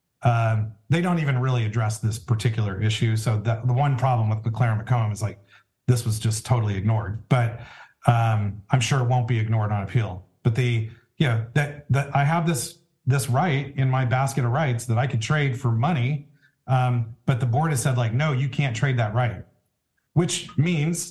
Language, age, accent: English, 40-59, American